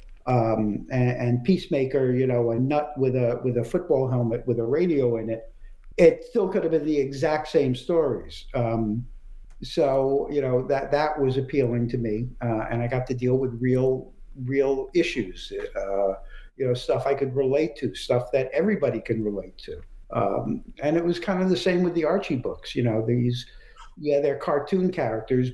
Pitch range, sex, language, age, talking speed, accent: 120-150 Hz, male, English, 50-69, 190 wpm, American